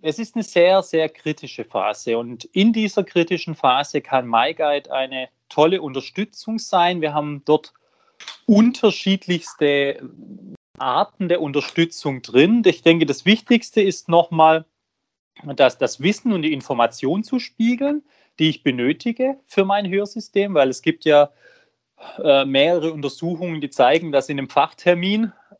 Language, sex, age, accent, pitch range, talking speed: German, male, 30-49, German, 135-185 Hz, 135 wpm